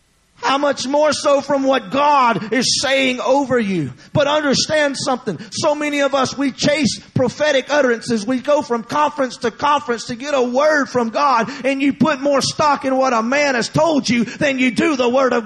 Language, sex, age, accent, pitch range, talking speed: English, male, 30-49, American, 175-290 Hz, 200 wpm